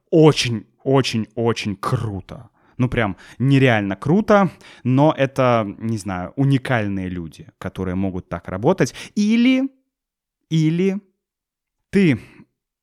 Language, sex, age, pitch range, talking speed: Russian, male, 20-39, 120-170 Hz, 90 wpm